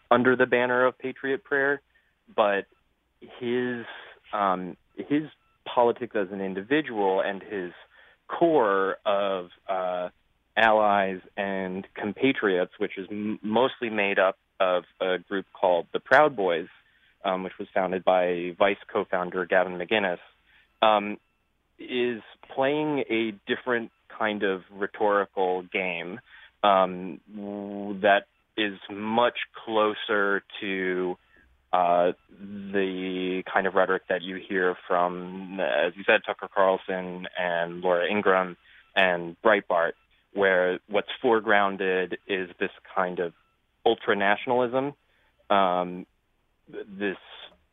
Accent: American